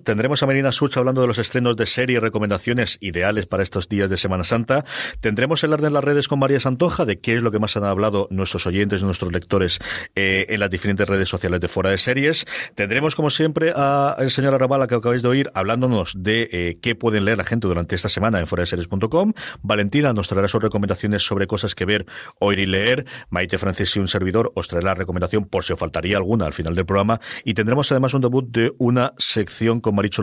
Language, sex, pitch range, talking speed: Spanish, male, 100-125 Hz, 230 wpm